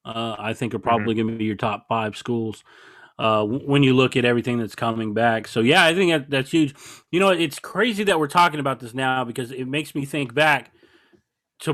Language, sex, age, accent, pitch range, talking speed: English, male, 30-49, American, 120-155 Hz, 225 wpm